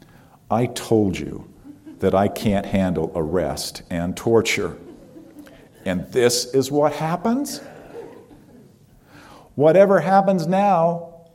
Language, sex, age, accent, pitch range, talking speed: English, male, 50-69, American, 95-130 Hz, 95 wpm